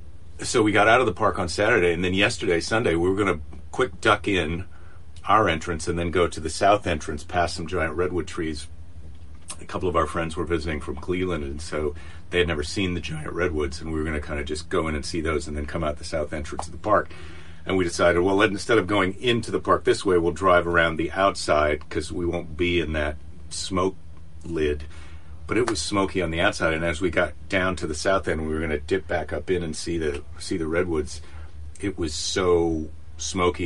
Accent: American